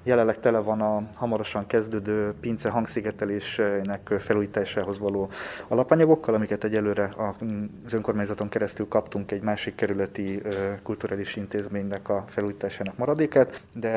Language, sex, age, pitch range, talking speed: Hungarian, male, 20-39, 105-115 Hz, 110 wpm